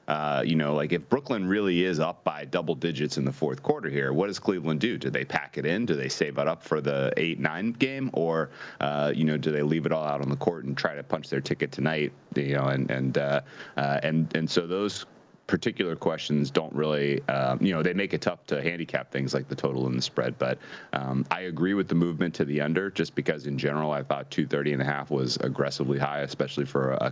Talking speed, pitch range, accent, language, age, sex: 245 wpm, 70-80 Hz, American, English, 30-49, male